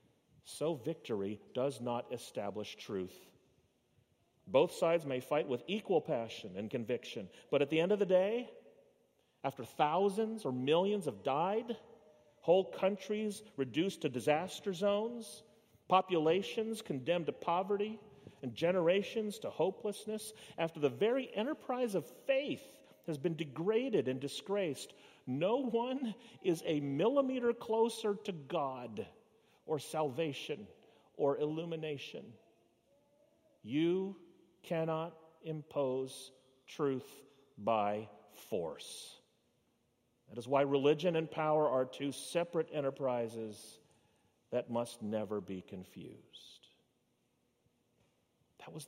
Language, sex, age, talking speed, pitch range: English, male, 40-59, 110 wpm, 130-200 Hz